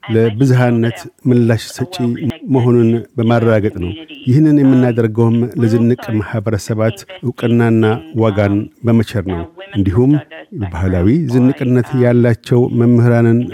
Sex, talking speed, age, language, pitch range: male, 85 wpm, 50-69, Amharic, 115-130 Hz